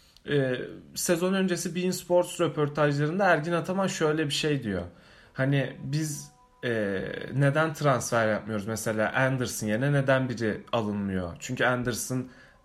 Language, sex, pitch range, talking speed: Turkish, male, 125-170 Hz, 115 wpm